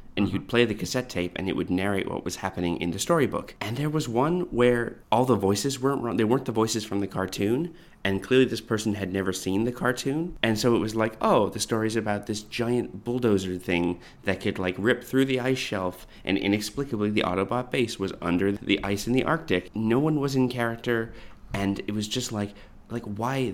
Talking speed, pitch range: 220 wpm, 95-125 Hz